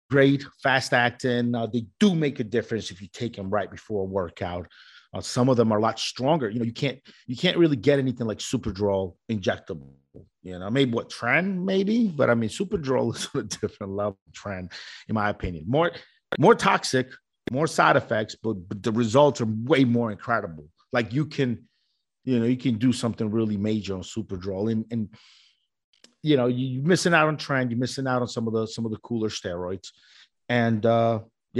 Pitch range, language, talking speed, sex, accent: 110-150 Hz, English, 200 wpm, male, American